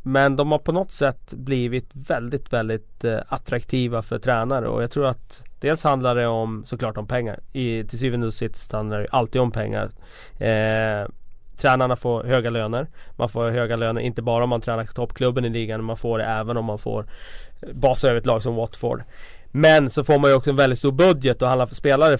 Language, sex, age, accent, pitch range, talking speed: Swedish, male, 30-49, native, 115-135 Hz, 210 wpm